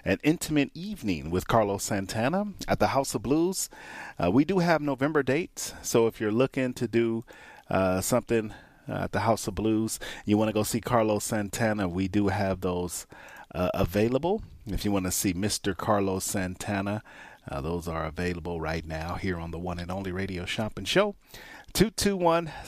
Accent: American